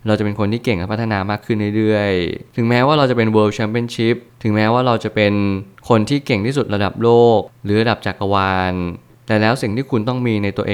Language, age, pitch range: Thai, 20-39, 100-120 Hz